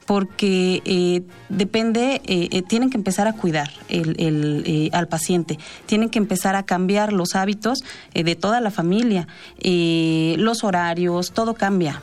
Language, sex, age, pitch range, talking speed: Spanish, female, 30-49, 175-215 Hz, 160 wpm